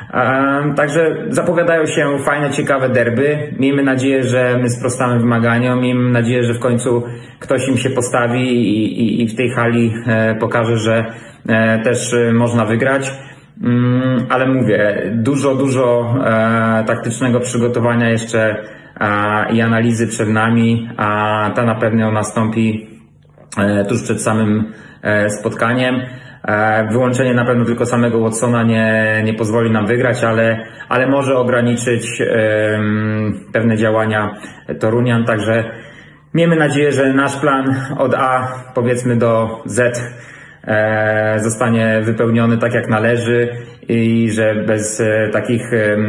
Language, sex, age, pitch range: Polish, male, 30-49, 110-125 Hz